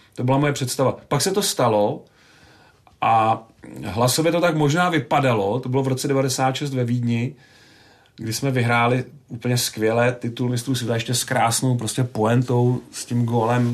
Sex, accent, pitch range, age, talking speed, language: male, native, 120-150 Hz, 40-59, 160 wpm, Czech